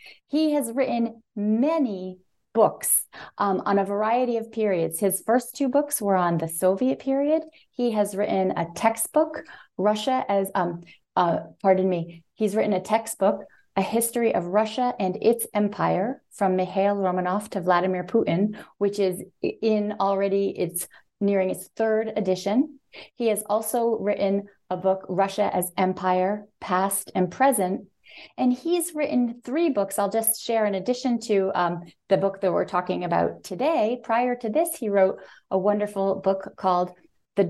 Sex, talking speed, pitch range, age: female, 155 wpm, 185-230 Hz, 30-49